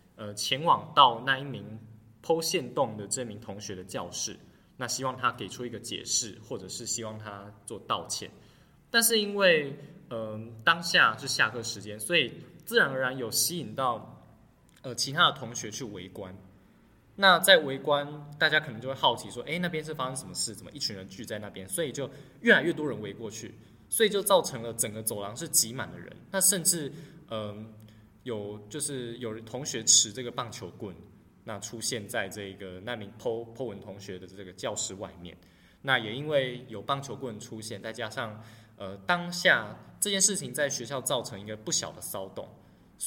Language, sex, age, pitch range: Chinese, male, 20-39, 105-135 Hz